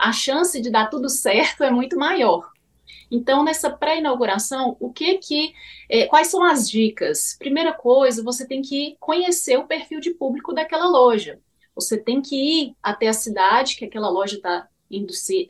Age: 30-49